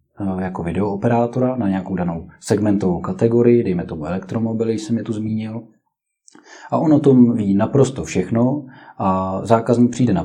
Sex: male